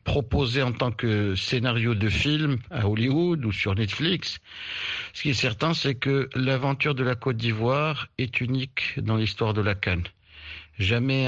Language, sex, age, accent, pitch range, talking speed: French, male, 60-79, French, 110-140 Hz, 165 wpm